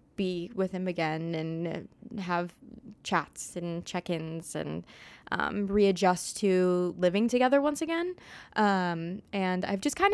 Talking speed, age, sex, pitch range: 130 wpm, 20-39, female, 180-220 Hz